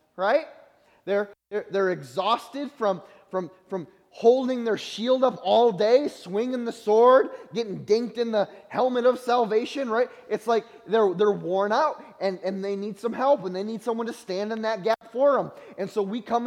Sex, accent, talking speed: male, American, 190 wpm